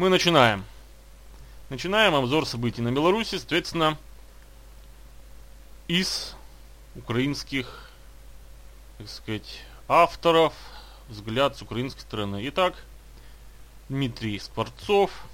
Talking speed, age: 80 wpm, 30-49